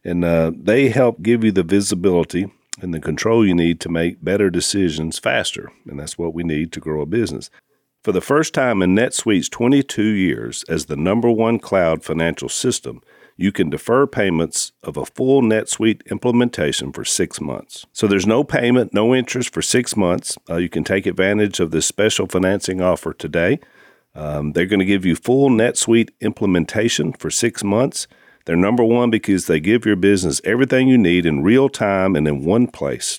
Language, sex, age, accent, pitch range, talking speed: English, male, 50-69, American, 85-120 Hz, 190 wpm